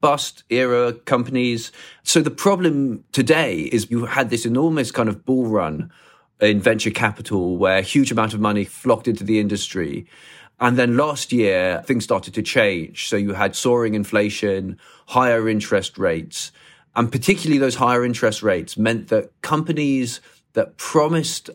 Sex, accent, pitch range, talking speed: male, British, 105-125 Hz, 155 wpm